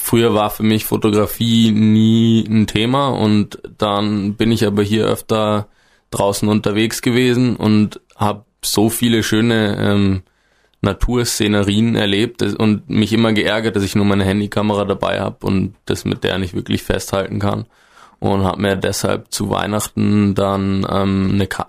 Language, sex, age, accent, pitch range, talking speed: German, male, 20-39, German, 100-110 Hz, 150 wpm